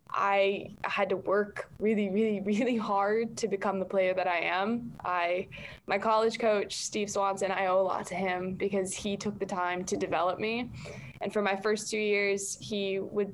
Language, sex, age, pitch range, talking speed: English, female, 10-29, 195-210 Hz, 195 wpm